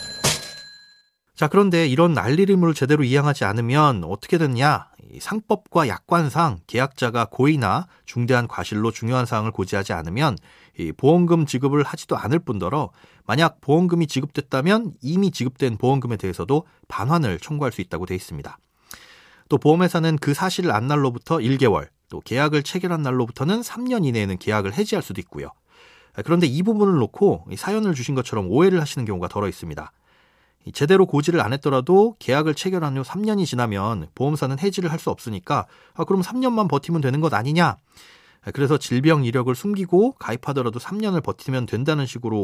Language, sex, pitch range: Korean, male, 120-170 Hz